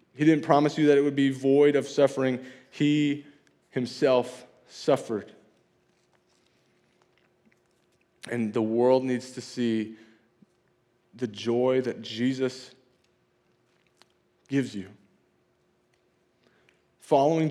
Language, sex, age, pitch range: English, male, 20-39, 125-145 Hz